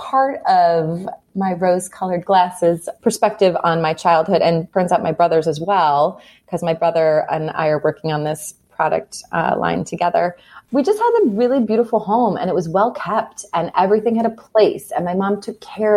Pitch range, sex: 160-195 Hz, female